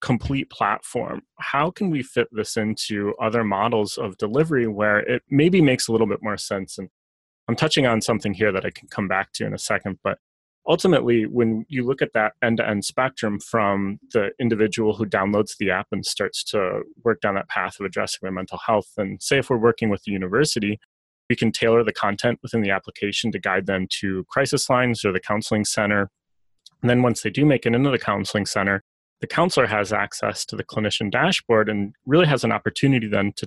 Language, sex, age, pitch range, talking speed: English, male, 30-49, 100-130 Hz, 210 wpm